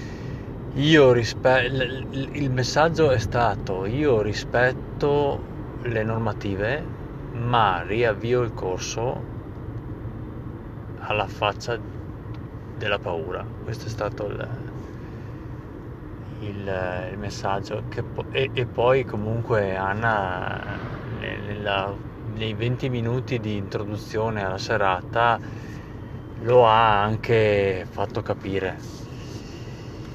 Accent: native